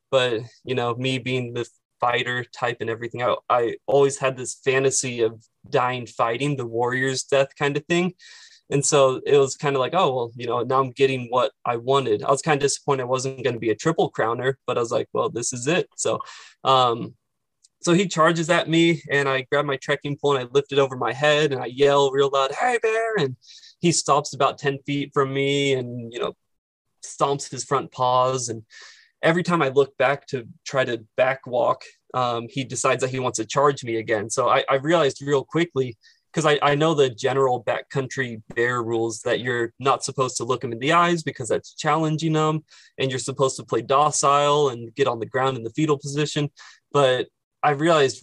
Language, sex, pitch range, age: English, male, 125-145 Hz, 20-39